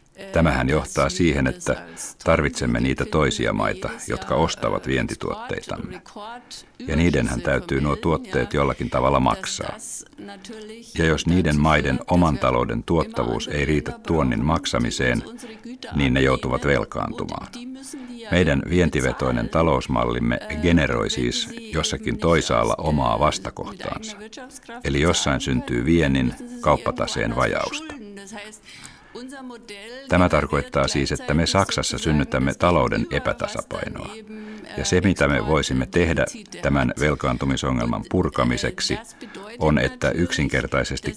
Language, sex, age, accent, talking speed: Finnish, male, 60-79, native, 100 wpm